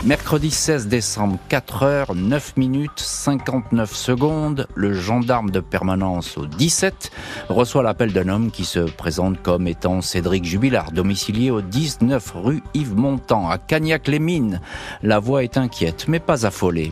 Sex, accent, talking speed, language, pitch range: male, French, 140 wpm, French, 95-130 Hz